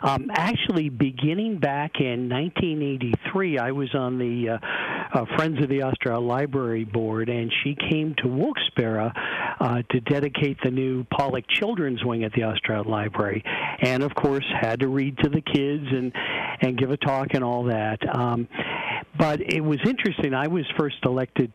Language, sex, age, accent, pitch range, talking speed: English, male, 50-69, American, 125-145 Hz, 170 wpm